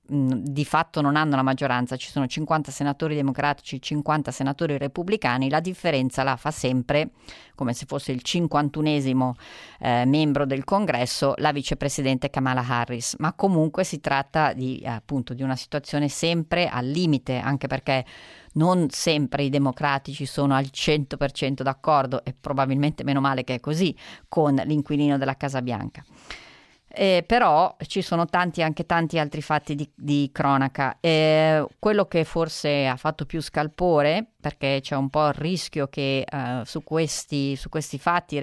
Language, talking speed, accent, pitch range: Italian, 155 wpm, native, 135-155 Hz